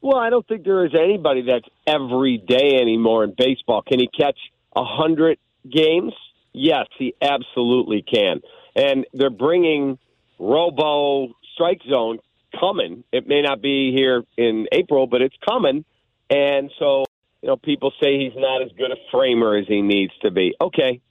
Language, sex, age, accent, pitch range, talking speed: English, male, 50-69, American, 120-145 Hz, 160 wpm